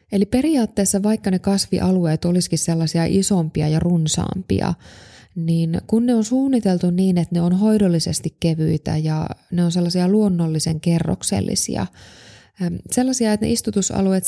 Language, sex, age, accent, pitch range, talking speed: Finnish, female, 20-39, native, 160-200 Hz, 130 wpm